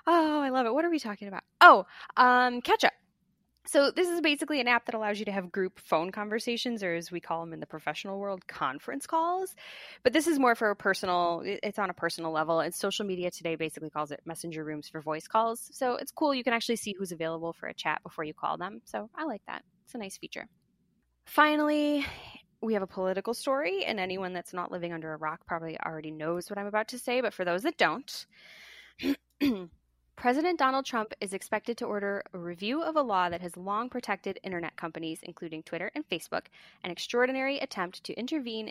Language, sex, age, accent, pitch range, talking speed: English, female, 10-29, American, 175-250 Hz, 220 wpm